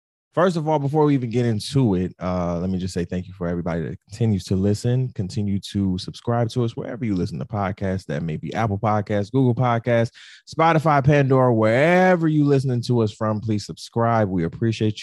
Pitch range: 100-160 Hz